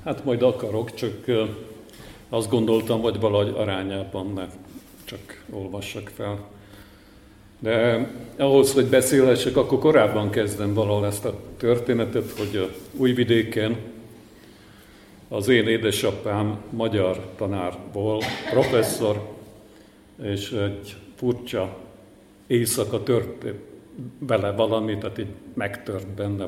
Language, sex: Hungarian, male